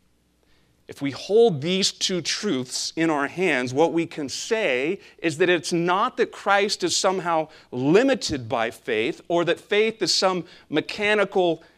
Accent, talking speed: American, 155 wpm